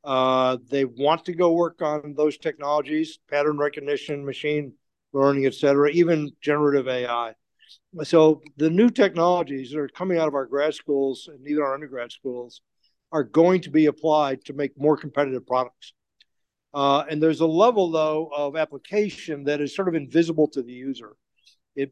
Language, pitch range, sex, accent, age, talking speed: English, 135-160 Hz, male, American, 60-79, 170 wpm